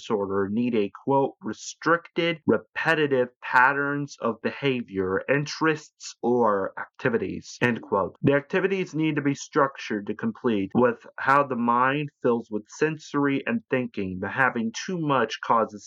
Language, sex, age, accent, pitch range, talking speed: English, male, 30-49, American, 110-140 Hz, 130 wpm